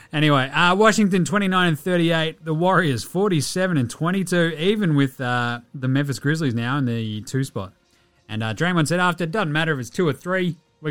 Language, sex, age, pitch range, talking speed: English, male, 30-49, 130-180 Hz, 195 wpm